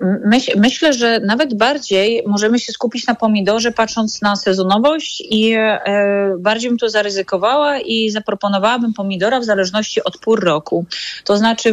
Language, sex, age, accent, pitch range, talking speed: Polish, female, 30-49, native, 180-215 Hz, 150 wpm